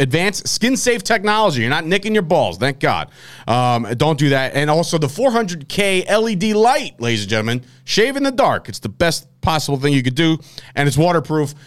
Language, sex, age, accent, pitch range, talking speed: English, male, 30-49, American, 120-170 Hz, 195 wpm